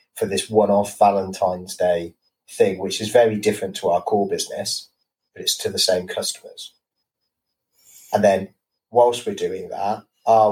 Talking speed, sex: 155 wpm, male